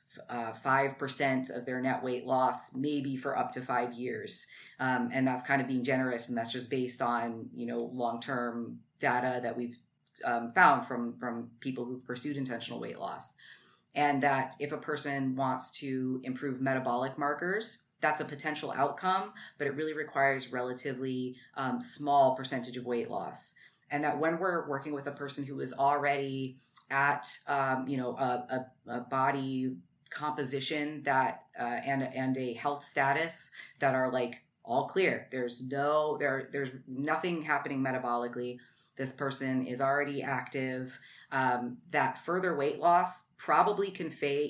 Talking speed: 160 wpm